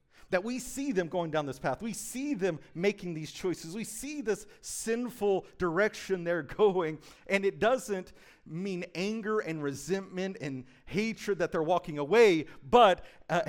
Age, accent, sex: 40-59, American, male